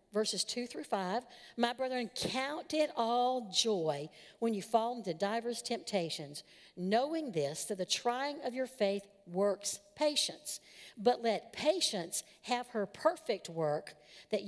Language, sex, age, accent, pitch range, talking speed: English, female, 50-69, American, 195-270 Hz, 140 wpm